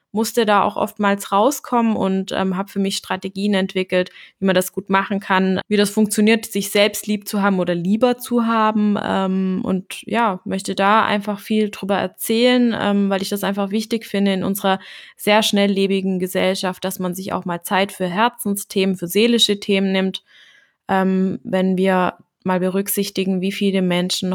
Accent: German